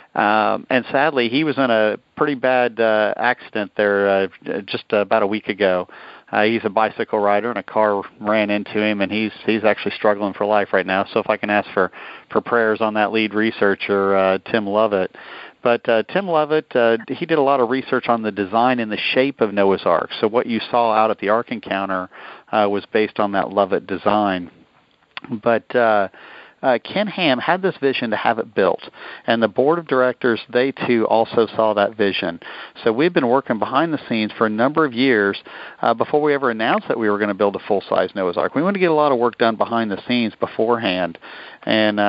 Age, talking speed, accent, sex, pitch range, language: 50-69, 220 wpm, American, male, 105-120 Hz, English